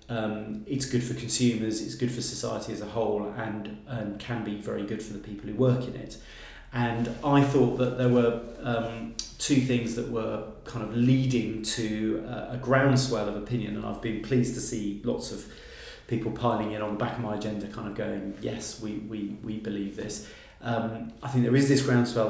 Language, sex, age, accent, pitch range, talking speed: English, male, 30-49, British, 105-120 Hz, 210 wpm